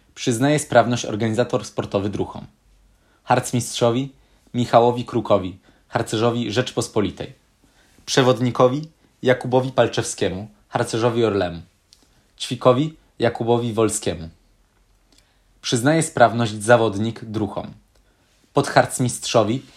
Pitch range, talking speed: 105-125 Hz, 70 wpm